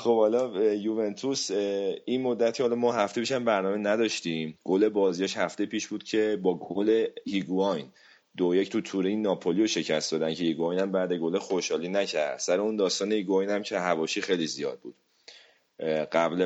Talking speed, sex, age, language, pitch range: 165 wpm, male, 30-49, Persian, 85-105 Hz